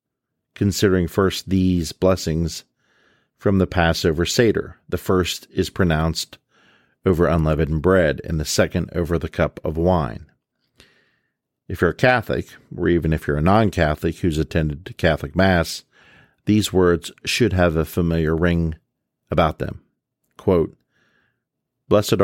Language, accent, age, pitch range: English, American, 50-69, 80-90 Hz